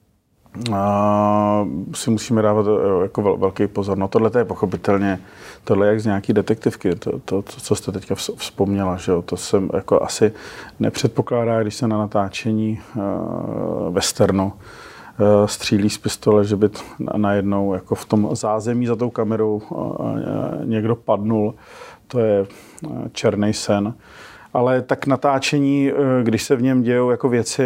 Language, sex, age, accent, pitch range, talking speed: Czech, male, 40-59, native, 105-120 Hz, 160 wpm